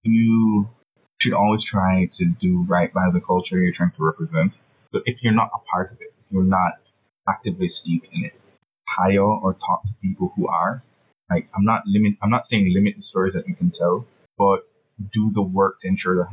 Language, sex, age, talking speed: English, male, 20-39, 215 wpm